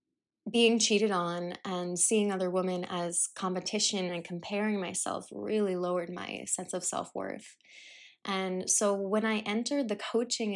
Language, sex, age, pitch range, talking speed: English, female, 20-39, 185-230 Hz, 140 wpm